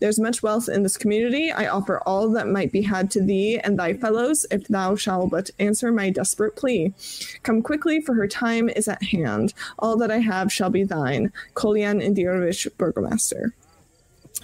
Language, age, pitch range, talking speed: English, 20-39, 190-220 Hz, 185 wpm